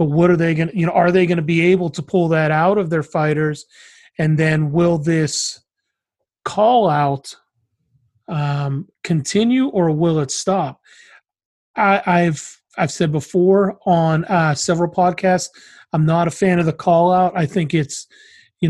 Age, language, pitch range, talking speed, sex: 30-49, English, 155-180 Hz, 170 wpm, male